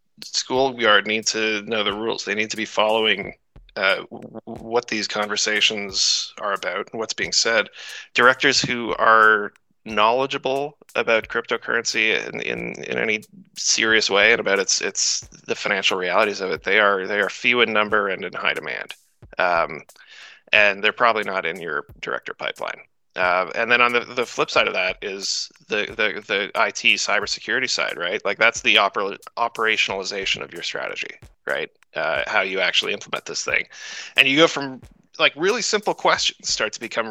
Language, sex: English, male